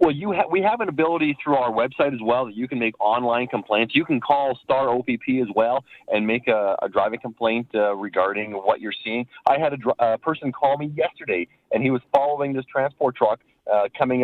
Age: 40-59